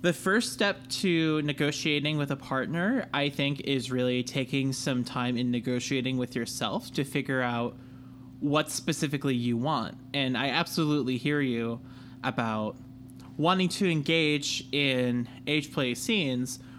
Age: 20-39